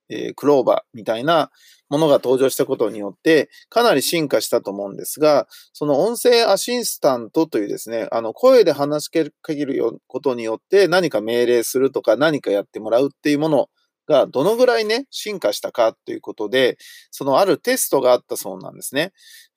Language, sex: Japanese, male